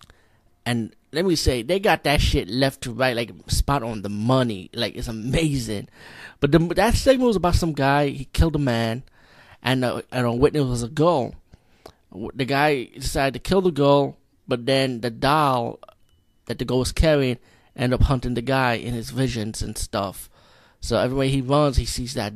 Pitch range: 115-150 Hz